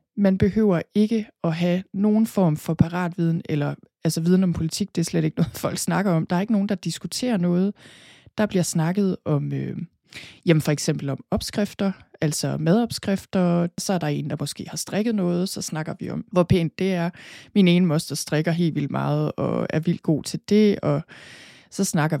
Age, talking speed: 20-39, 200 wpm